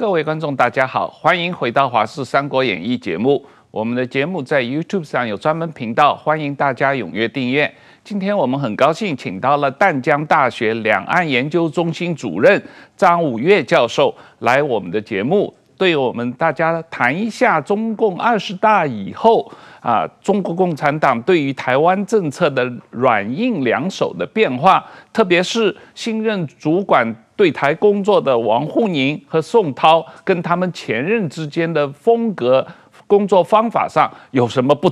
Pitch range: 130-190 Hz